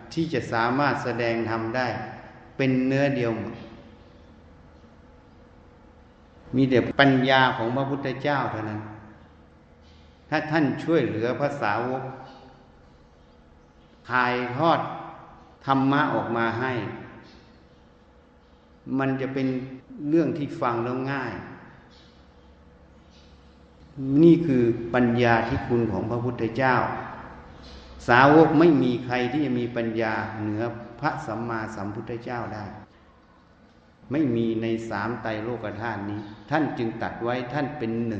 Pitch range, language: 110-135 Hz, Thai